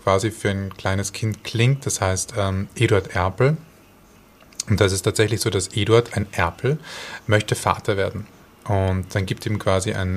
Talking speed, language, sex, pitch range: 170 wpm, German, male, 100-120 Hz